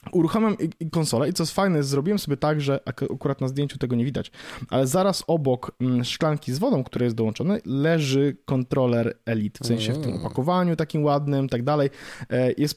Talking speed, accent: 185 wpm, native